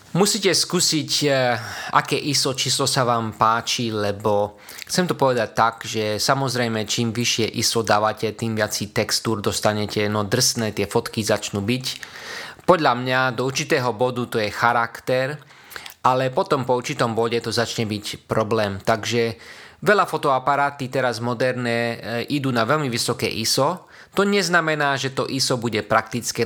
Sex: male